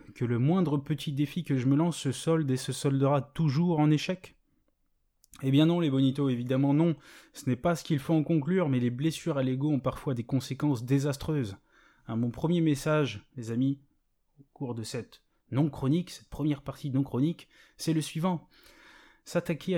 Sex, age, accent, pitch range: male, 20-39, French, 130-155 Hz